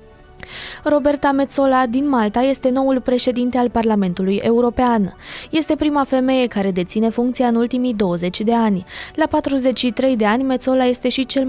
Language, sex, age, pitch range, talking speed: Romanian, female, 20-39, 215-260 Hz, 150 wpm